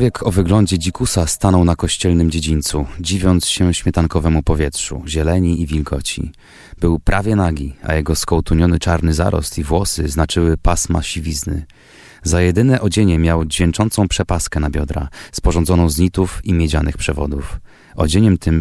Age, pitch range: 30-49, 80-90 Hz